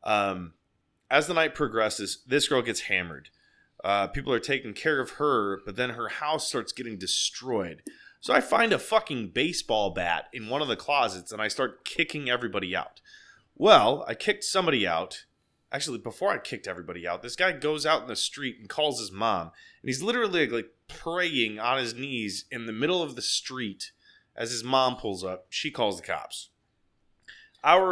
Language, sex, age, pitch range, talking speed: English, male, 20-39, 105-150 Hz, 185 wpm